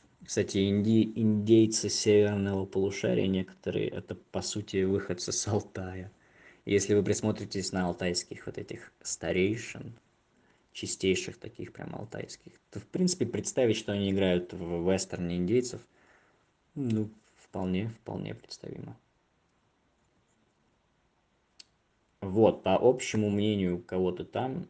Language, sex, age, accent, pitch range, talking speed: Russian, male, 20-39, native, 95-110 Hz, 105 wpm